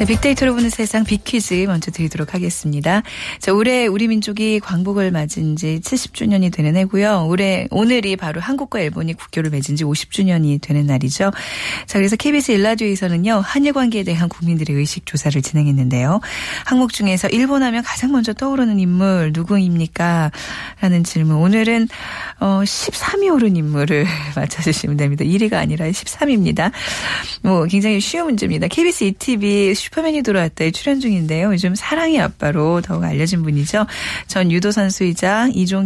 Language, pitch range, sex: Korean, 160-235 Hz, female